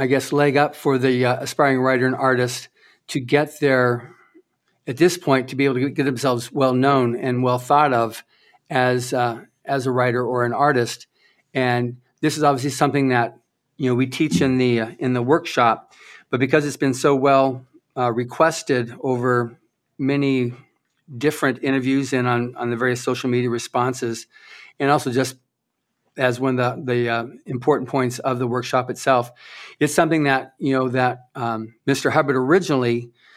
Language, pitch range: English, 125-140 Hz